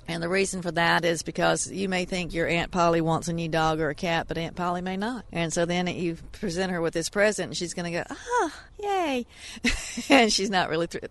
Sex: female